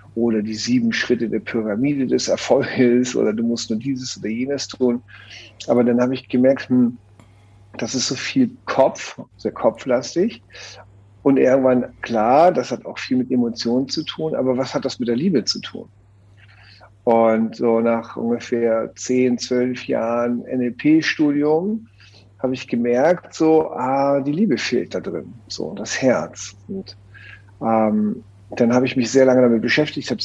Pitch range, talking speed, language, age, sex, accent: 110-135 Hz, 160 wpm, German, 50-69, male, German